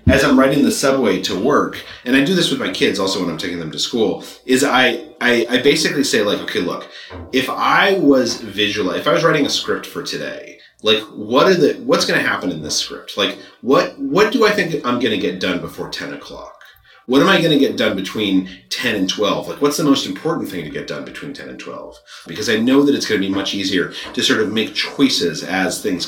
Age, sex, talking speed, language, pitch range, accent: 30-49, male, 250 wpm, English, 120-180 Hz, American